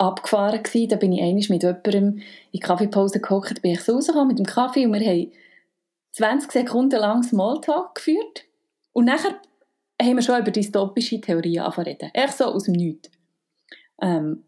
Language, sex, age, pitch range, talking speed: German, female, 30-49, 190-260 Hz, 180 wpm